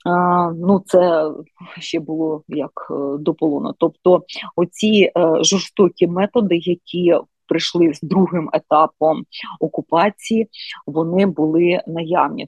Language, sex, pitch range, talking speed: Ukrainian, female, 165-195 Hz, 90 wpm